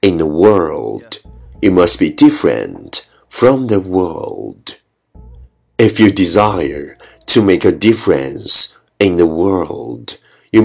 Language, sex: Chinese, male